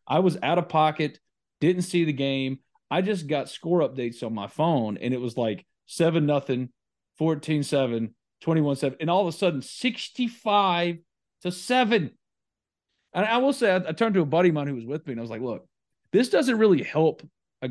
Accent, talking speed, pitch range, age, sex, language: American, 195 wpm, 120-170 Hz, 40-59, male, English